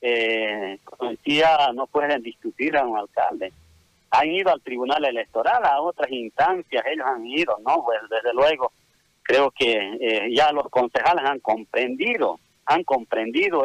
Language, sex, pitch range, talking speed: Spanish, male, 120-170 Hz, 145 wpm